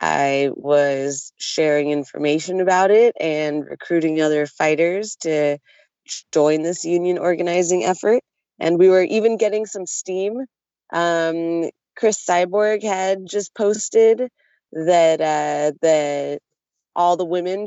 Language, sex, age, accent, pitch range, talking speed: English, female, 20-39, American, 155-195 Hz, 120 wpm